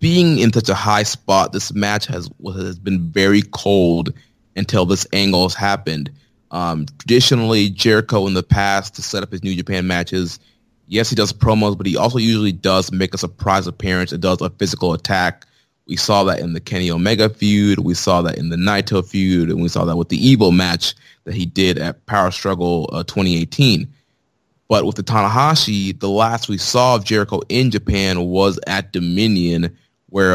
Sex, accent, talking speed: male, American, 190 wpm